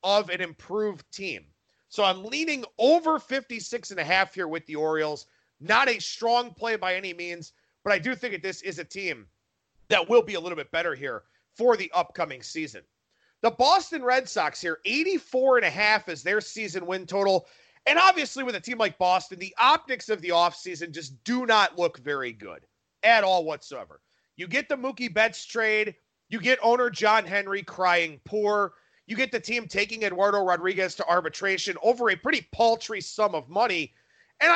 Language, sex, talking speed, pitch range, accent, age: English, male, 190 wpm, 185-255 Hz, American, 30-49